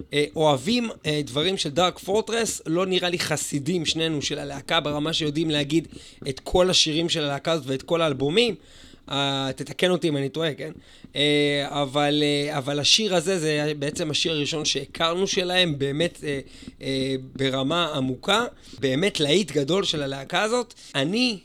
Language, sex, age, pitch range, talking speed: Hebrew, male, 30-49, 145-190 Hz, 140 wpm